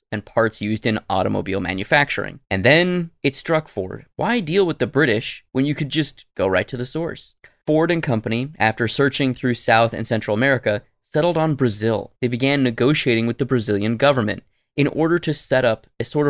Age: 20-39